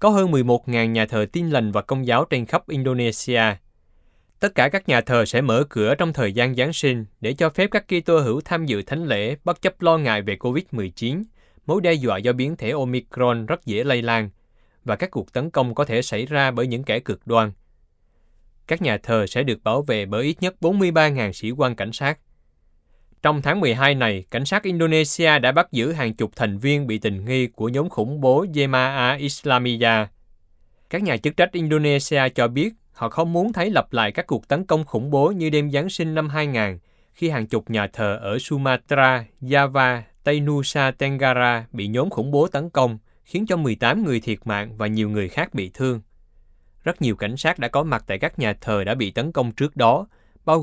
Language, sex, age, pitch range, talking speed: Vietnamese, male, 20-39, 110-150 Hz, 210 wpm